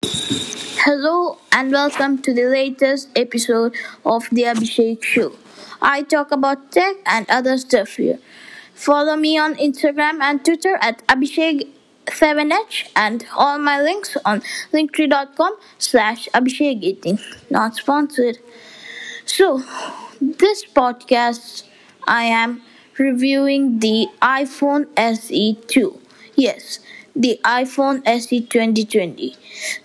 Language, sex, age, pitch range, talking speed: English, female, 20-39, 235-290 Hz, 105 wpm